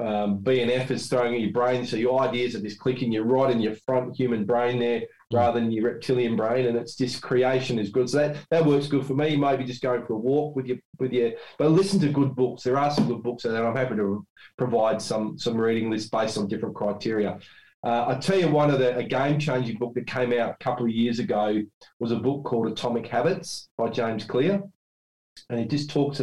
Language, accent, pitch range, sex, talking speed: English, Australian, 115-135 Hz, male, 240 wpm